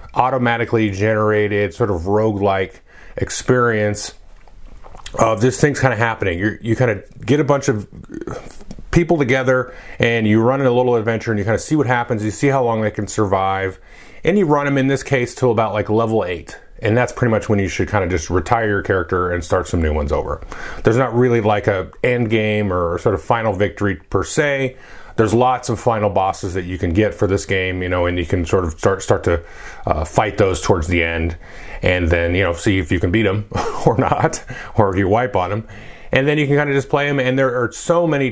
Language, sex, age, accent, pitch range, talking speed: English, male, 30-49, American, 100-130 Hz, 230 wpm